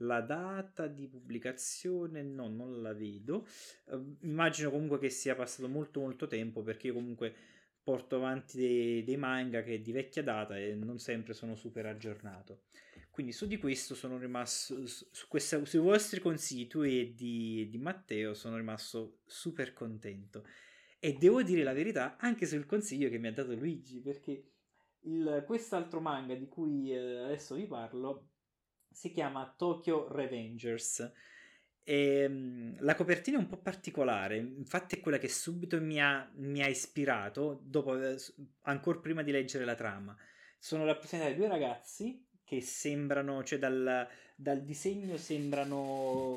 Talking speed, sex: 150 wpm, male